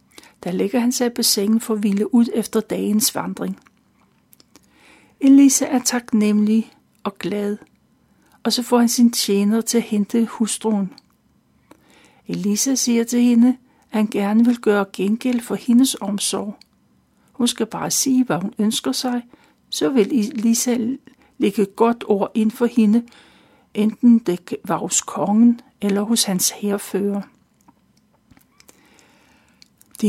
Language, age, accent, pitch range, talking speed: Danish, 60-79, native, 210-250 Hz, 135 wpm